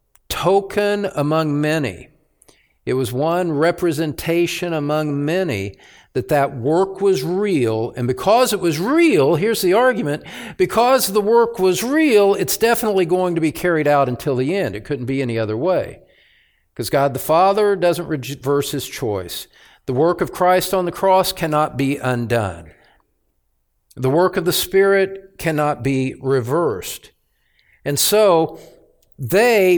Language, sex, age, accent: English, male, 50-69, American